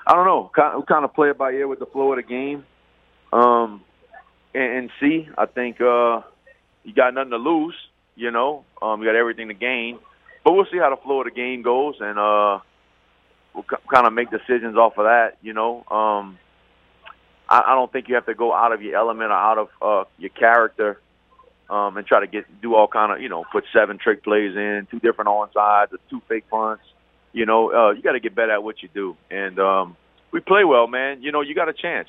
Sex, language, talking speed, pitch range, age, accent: male, English, 225 wpm, 105-130 Hz, 30-49, American